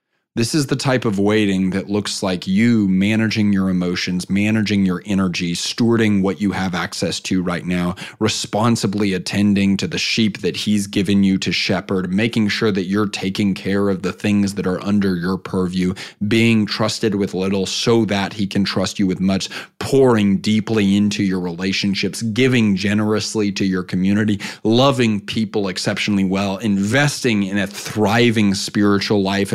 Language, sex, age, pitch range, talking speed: English, male, 30-49, 95-120 Hz, 165 wpm